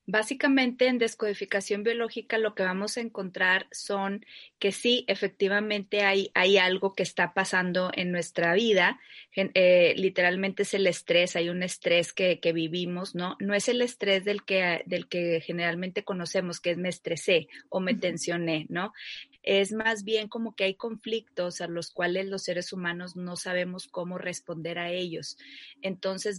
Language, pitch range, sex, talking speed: Spanish, 175-200 Hz, female, 165 wpm